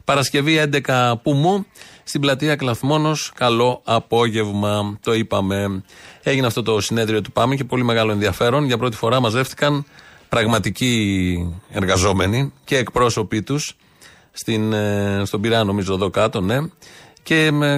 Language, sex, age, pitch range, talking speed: Greek, male, 30-49, 110-140 Hz, 125 wpm